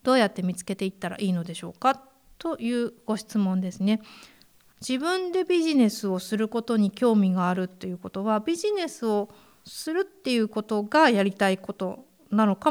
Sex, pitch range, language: female, 195-260 Hz, Japanese